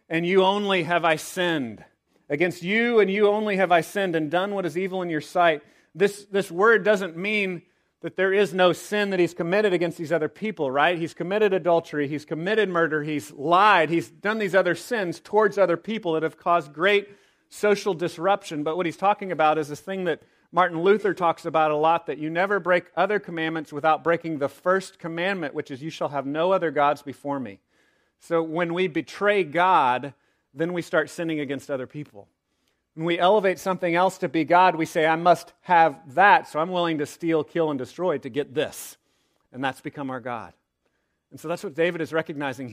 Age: 40-59